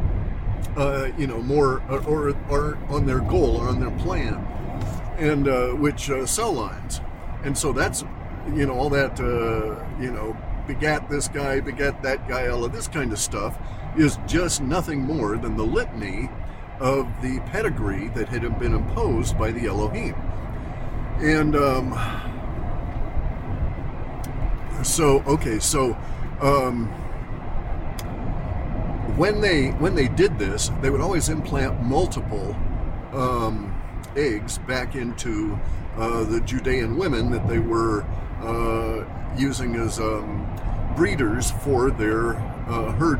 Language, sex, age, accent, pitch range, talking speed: English, male, 50-69, American, 105-135 Hz, 130 wpm